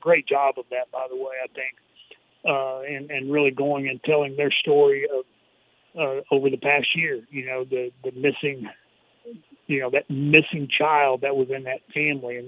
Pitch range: 130-155 Hz